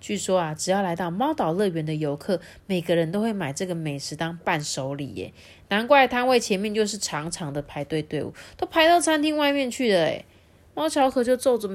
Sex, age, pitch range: female, 30-49, 155-235 Hz